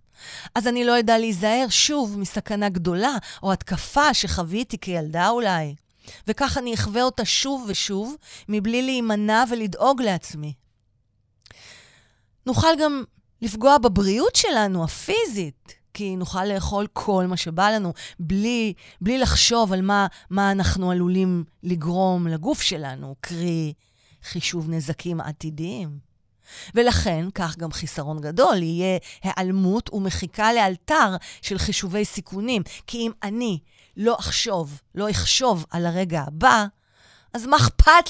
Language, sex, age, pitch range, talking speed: Hebrew, female, 30-49, 155-225 Hz, 120 wpm